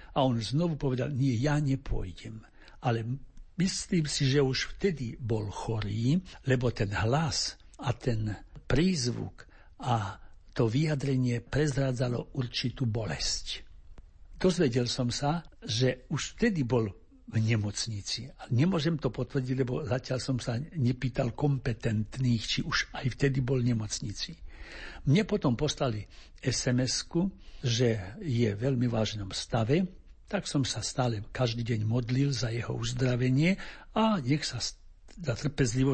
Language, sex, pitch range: Slovak, male, 115-145 Hz